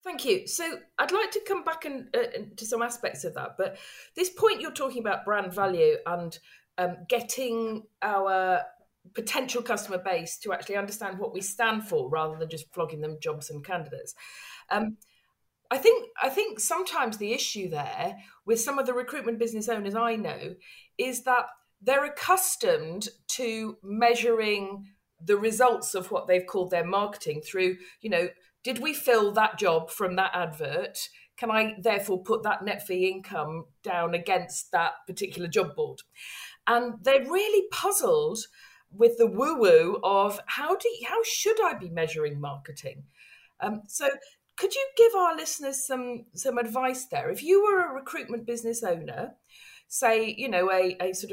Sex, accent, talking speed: female, British, 165 wpm